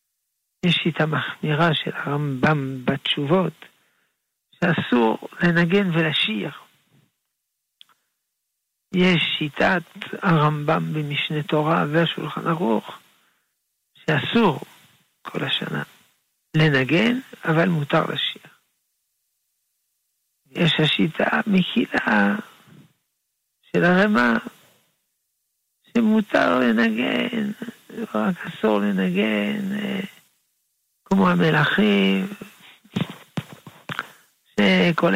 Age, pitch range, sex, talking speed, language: 60-79, 155-205 Hz, male, 60 wpm, Hebrew